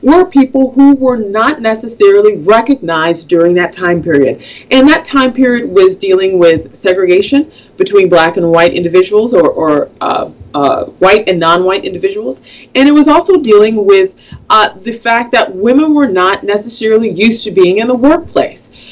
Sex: female